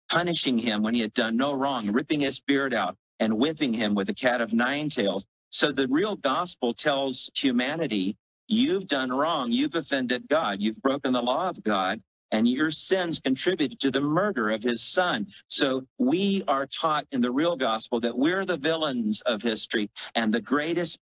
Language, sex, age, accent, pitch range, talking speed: English, male, 50-69, American, 120-155 Hz, 190 wpm